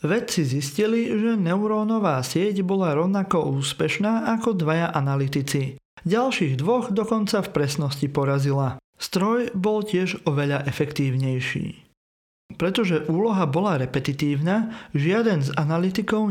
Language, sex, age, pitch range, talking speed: Slovak, male, 40-59, 150-215 Hz, 105 wpm